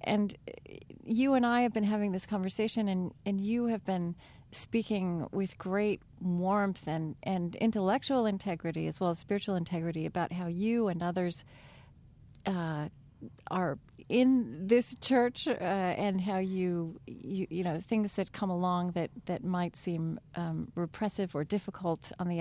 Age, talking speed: 40-59, 150 wpm